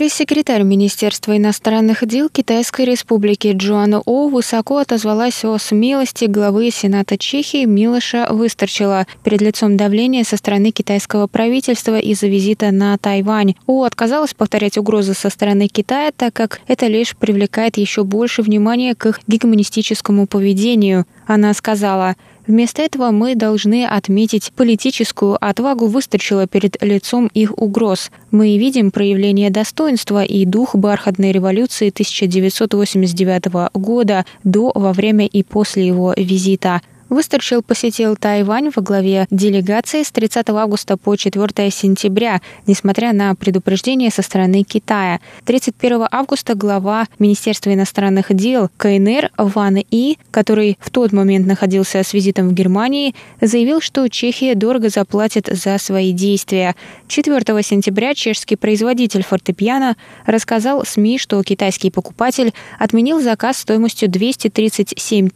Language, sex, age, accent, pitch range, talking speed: Russian, female, 20-39, native, 200-235 Hz, 125 wpm